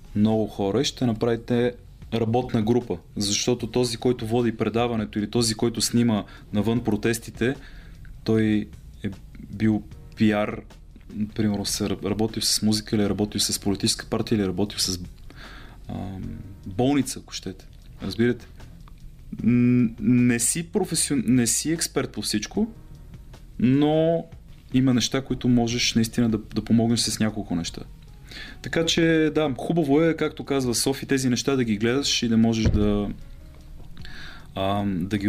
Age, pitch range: 30-49, 105-125 Hz